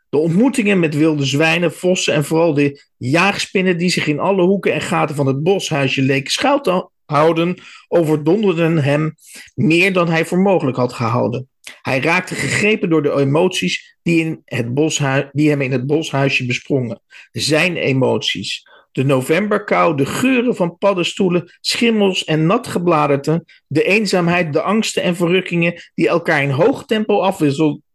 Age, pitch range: 50-69, 145-190 Hz